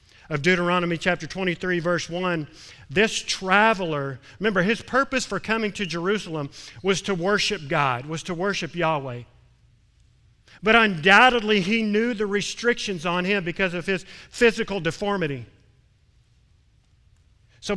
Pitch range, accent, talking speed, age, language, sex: 145-210 Hz, American, 125 wpm, 50-69, English, male